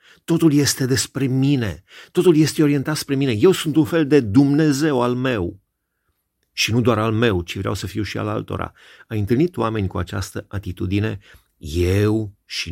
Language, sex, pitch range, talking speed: Romanian, male, 95-125 Hz, 175 wpm